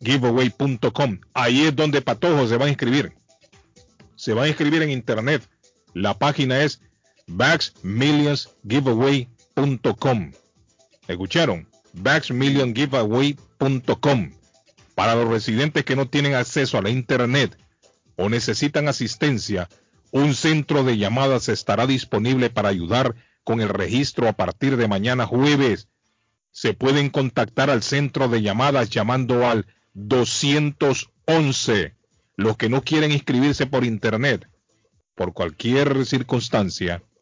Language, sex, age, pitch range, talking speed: Spanish, male, 40-59, 115-140 Hz, 115 wpm